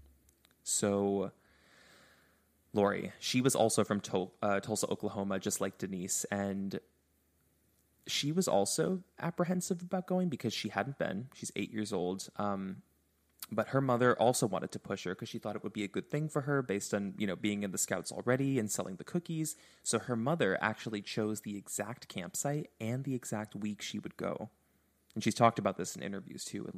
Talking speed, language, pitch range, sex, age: 190 wpm, English, 100-115 Hz, male, 20-39